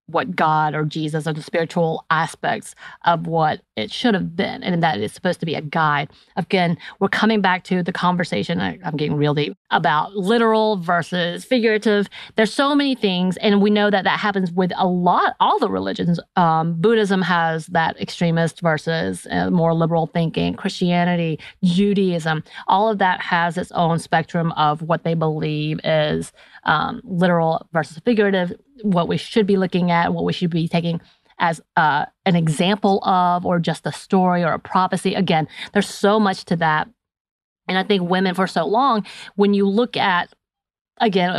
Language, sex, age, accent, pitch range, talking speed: English, female, 30-49, American, 160-195 Hz, 175 wpm